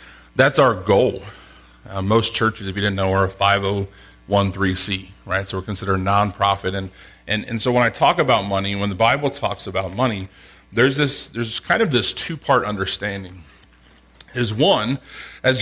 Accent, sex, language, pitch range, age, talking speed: American, male, English, 95-115 Hz, 40-59, 190 wpm